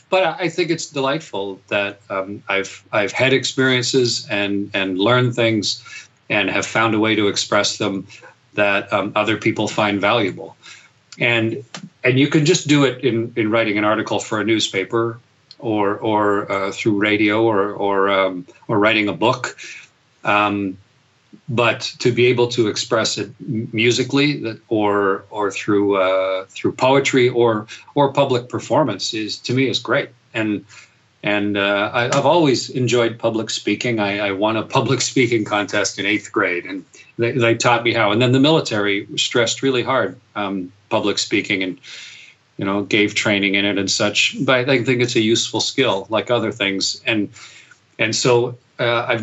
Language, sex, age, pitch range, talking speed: English, male, 40-59, 100-125 Hz, 170 wpm